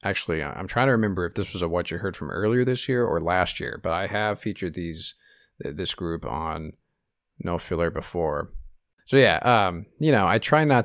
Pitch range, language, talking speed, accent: 85-120 Hz, English, 210 wpm, American